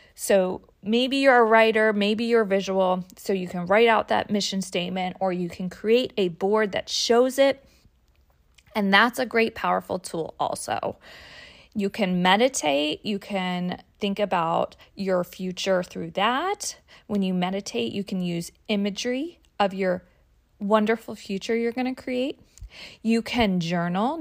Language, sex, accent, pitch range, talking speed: English, female, American, 185-230 Hz, 150 wpm